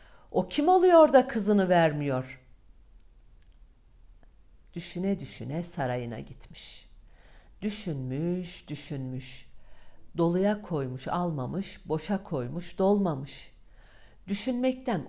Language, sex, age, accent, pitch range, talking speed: Turkish, female, 60-79, native, 130-175 Hz, 75 wpm